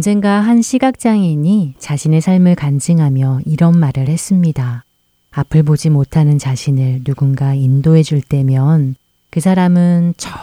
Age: 30-49